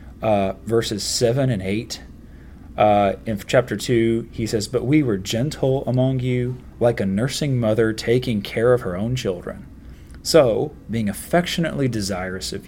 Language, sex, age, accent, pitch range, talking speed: English, male, 30-49, American, 100-130 Hz, 140 wpm